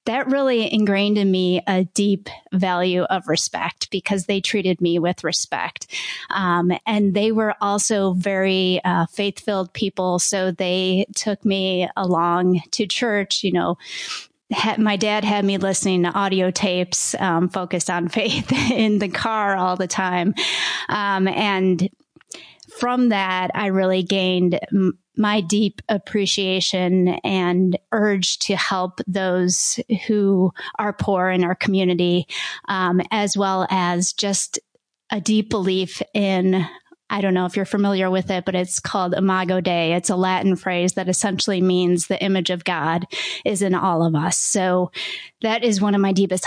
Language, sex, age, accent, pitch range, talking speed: English, female, 30-49, American, 180-205 Hz, 155 wpm